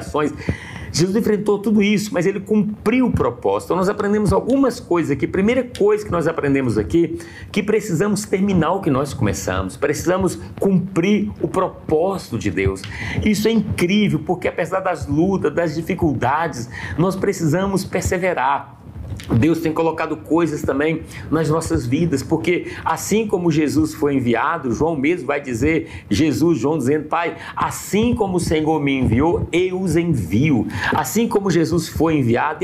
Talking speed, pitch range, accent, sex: 150 wpm, 140-195 Hz, Brazilian, male